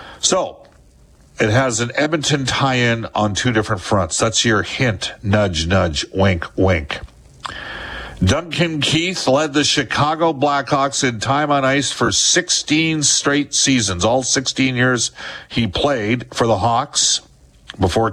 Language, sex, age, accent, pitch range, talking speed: English, male, 50-69, American, 105-140 Hz, 135 wpm